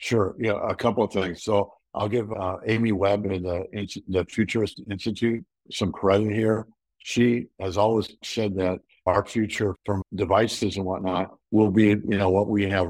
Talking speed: 175 wpm